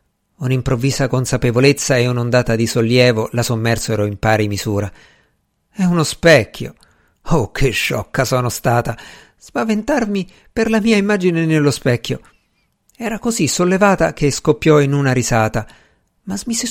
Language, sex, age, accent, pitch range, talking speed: Italian, male, 50-69, native, 115-170 Hz, 130 wpm